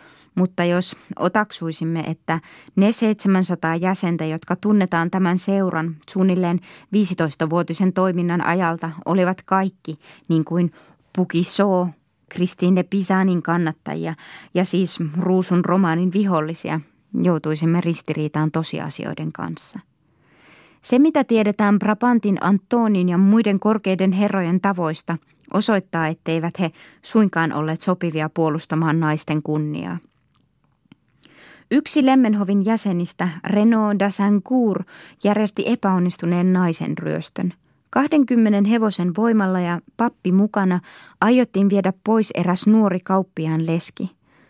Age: 20-39